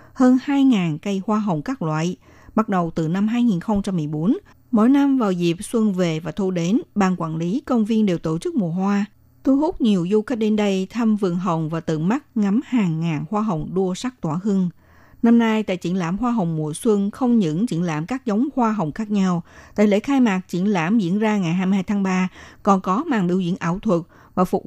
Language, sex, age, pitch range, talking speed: Vietnamese, female, 60-79, 175-230 Hz, 225 wpm